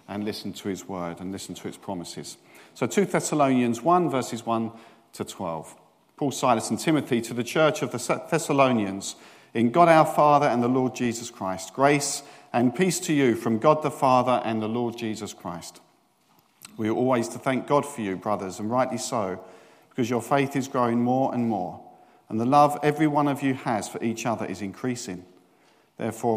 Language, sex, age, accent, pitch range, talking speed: English, male, 50-69, British, 105-135 Hz, 195 wpm